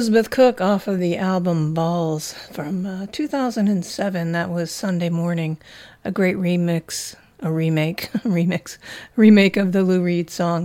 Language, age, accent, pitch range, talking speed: English, 50-69, American, 170-215 Hz, 145 wpm